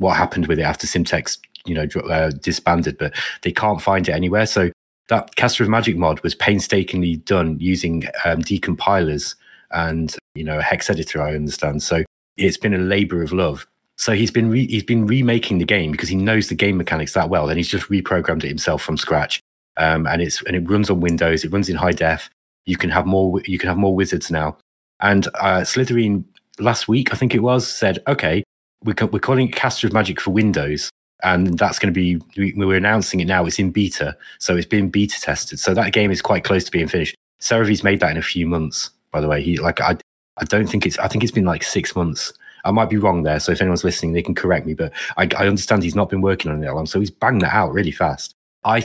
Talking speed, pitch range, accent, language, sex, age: 235 wpm, 80-105 Hz, British, English, male, 30-49